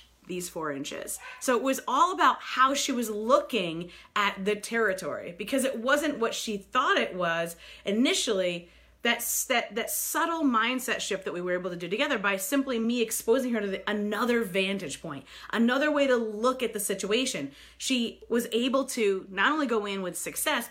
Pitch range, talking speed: 190-260 Hz, 185 wpm